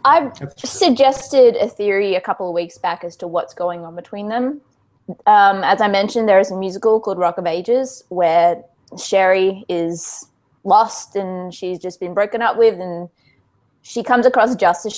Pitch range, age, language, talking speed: 180-235 Hz, 20-39, English, 175 wpm